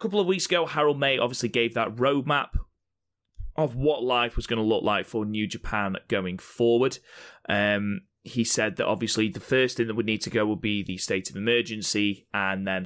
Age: 20-39